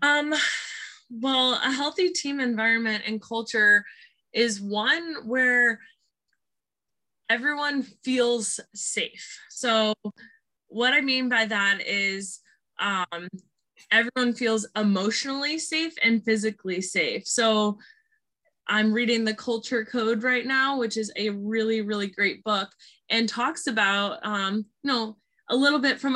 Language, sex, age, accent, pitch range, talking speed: English, female, 20-39, American, 210-255 Hz, 125 wpm